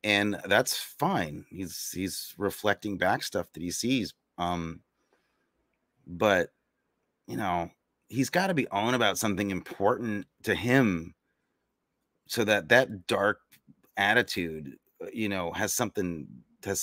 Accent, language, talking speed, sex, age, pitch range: American, English, 125 wpm, male, 30-49, 100-145 Hz